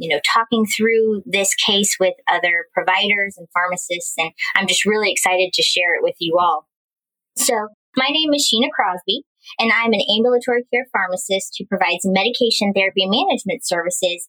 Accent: American